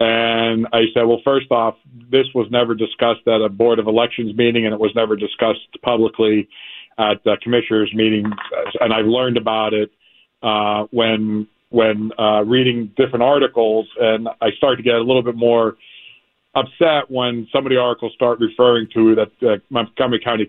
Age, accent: 50-69, American